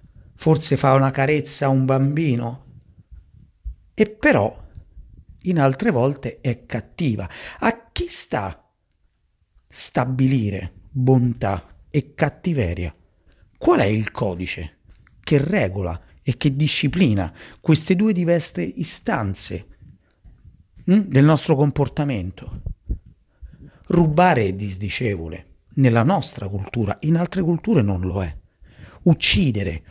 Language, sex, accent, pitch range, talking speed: Italian, male, native, 100-145 Hz, 100 wpm